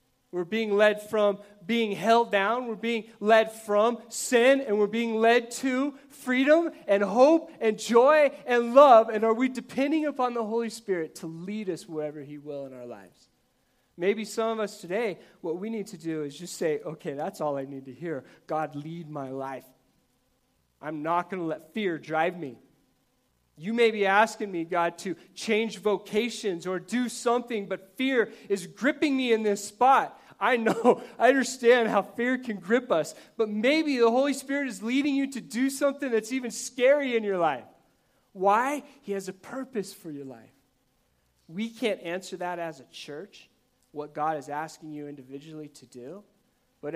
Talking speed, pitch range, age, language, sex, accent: 185 wpm, 155-230 Hz, 30-49, English, male, American